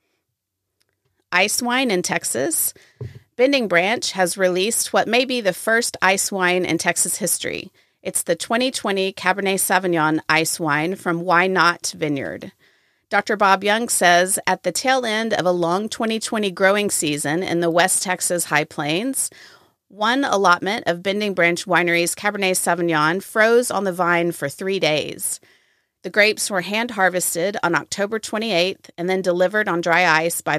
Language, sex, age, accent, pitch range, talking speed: English, female, 40-59, American, 170-200 Hz, 155 wpm